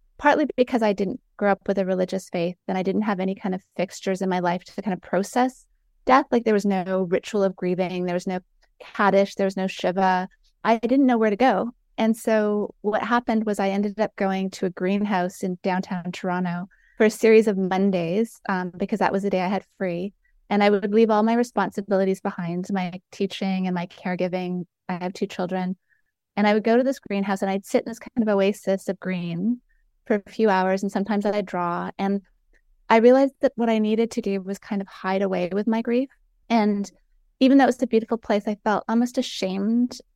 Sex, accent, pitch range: female, American, 190-220 Hz